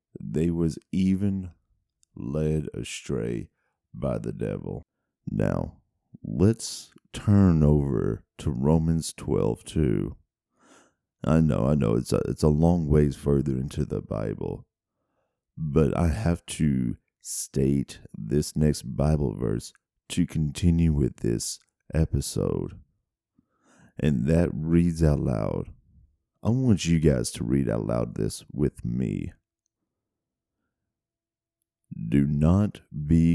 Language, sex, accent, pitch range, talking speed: English, male, American, 75-90 Hz, 115 wpm